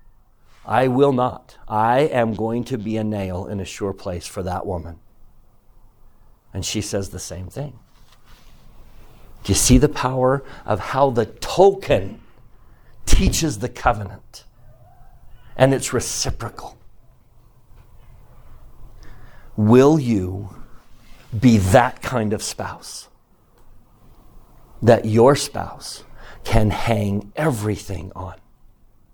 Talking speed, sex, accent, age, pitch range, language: 105 wpm, male, American, 50-69, 100-120 Hz, English